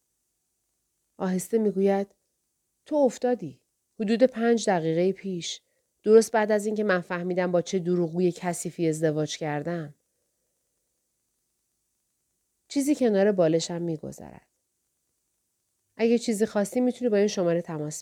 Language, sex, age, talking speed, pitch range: Persian, female, 40-59, 105 wpm, 165-225 Hz